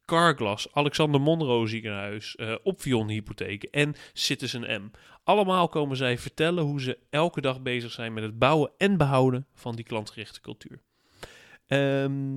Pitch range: 115-155 Hz